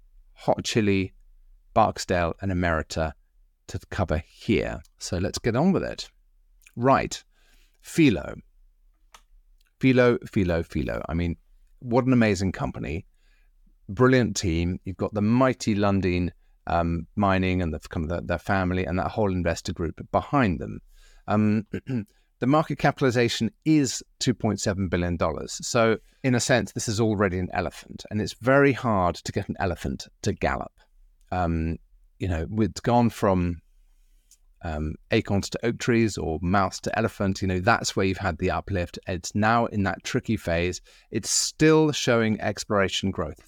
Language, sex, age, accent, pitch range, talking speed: English, male, 30-49, British, 90-115 Hz, 145 wpm